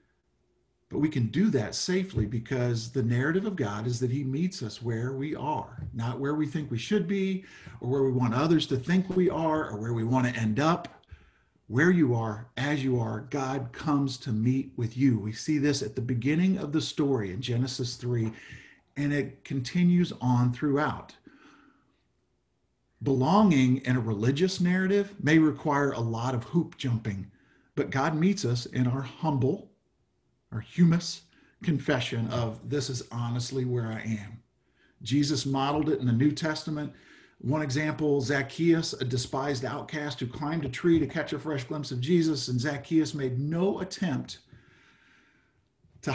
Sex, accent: male, American